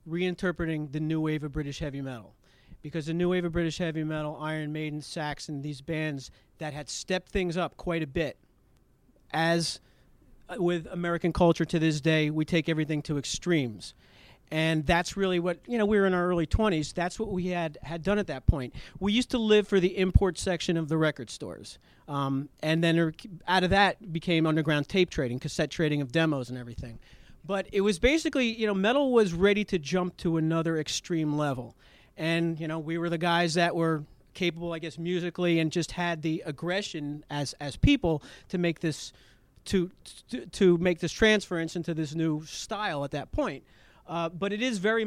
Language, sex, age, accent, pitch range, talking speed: English, male, 40-59, American, 155-185 Hz, 195 wpm